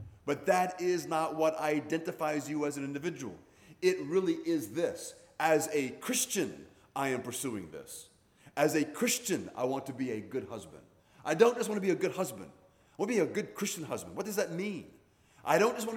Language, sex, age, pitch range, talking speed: English, male, 30-49, 125-185 Hz, 210 wpm